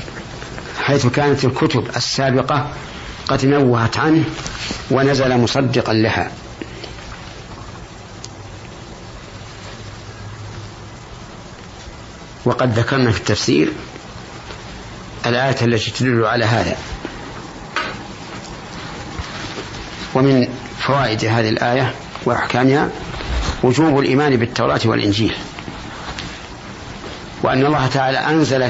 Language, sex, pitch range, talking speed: Arabic, male, 115-140 Hz, 65 wpm